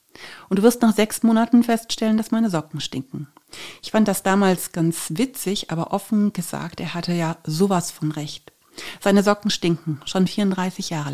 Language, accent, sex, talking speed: German, German, female, 170 wpm